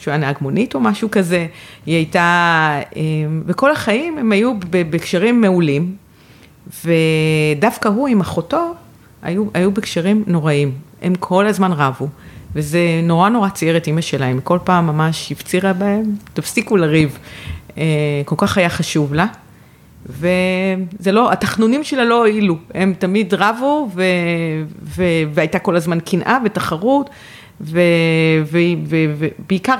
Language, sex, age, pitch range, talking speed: Hebrew, female, 40-59, 155-205 Hz, 120 wpm